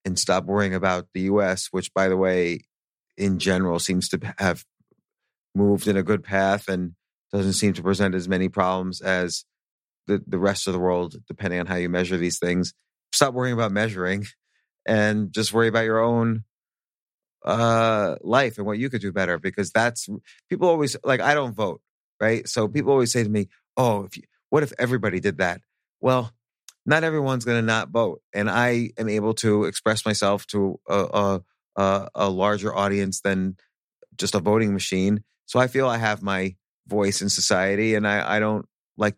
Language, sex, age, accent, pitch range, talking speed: English, male, 30-49, American, 95-115 Hz, 185 wpm